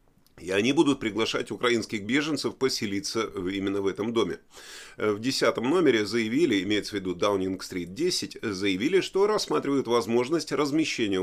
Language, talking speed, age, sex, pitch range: Russian, 140 wpm, 30-49, male, 105-160 Hz